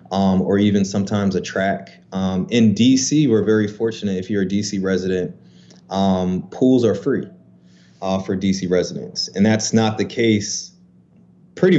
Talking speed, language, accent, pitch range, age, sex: 160 wpm, English, American, 95-110 Hz, 20-39, male